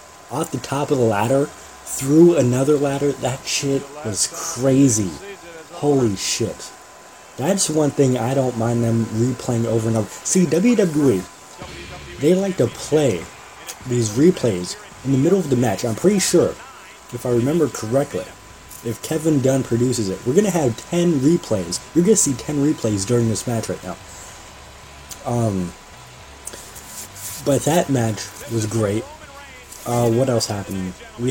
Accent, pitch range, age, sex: American, 110-145 Hz, 30-49, male